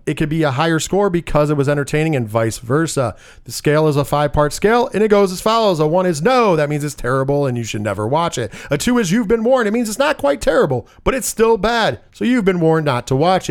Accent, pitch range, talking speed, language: American, 125-180 Hz, 275 wpm, English